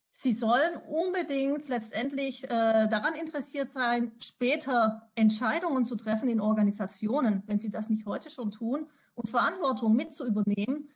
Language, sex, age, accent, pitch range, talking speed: German, female, 30-49, German, 215-265 Hz, 130 wpm